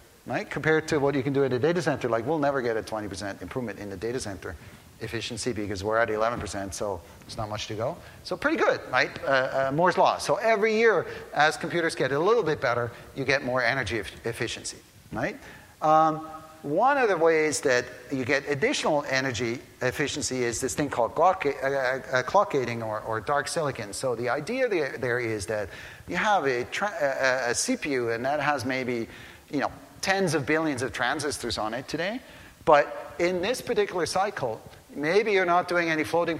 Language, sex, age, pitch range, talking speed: English, male, 50-69, 120-160 Hz, 195 wpm